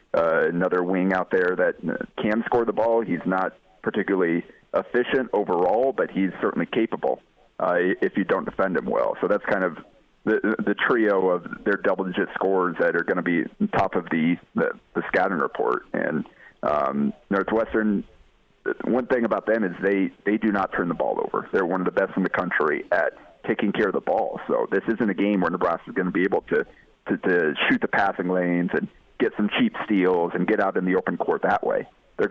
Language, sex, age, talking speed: English, male, 40-59, 215 wpm